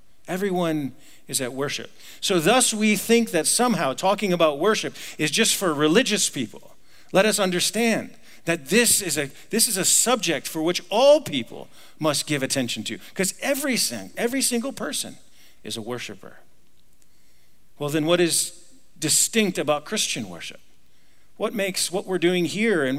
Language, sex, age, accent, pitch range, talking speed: English, male, 50-69, American, 130-185 Hz, 155 wpm